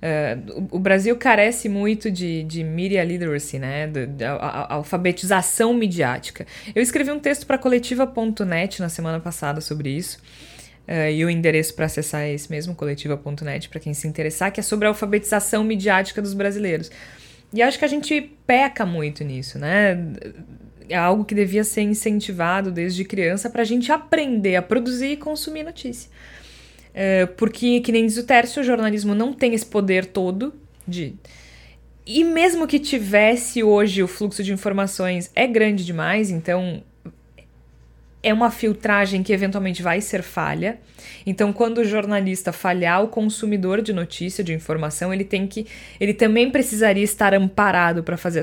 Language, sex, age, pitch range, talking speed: Portuguese, female, 20-39, 165-220 Hz, 155 wpm